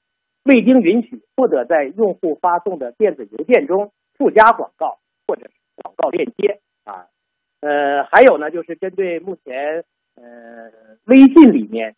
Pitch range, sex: 140-225 Hz, male